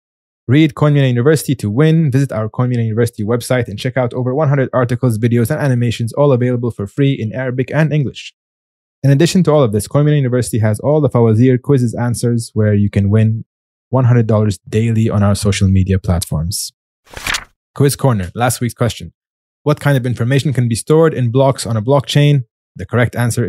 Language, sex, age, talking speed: English, male, 20-39, 185 wpm